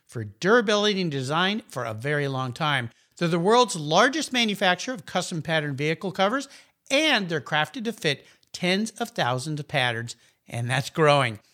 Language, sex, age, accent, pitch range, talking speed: English, male, 50-69, American, 145-230 Hz, 165 wpm